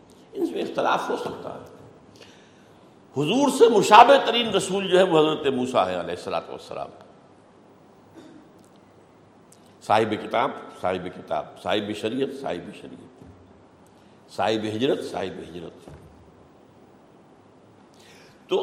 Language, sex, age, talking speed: Urdu, male, 60-79, 105 wpm